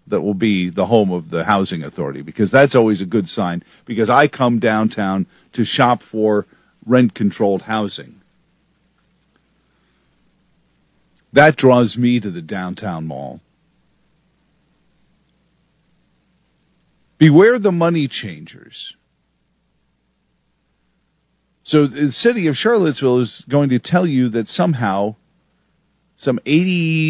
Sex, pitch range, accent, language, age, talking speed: male, 105-160 Hz, American, English, 50-69, 110 wpm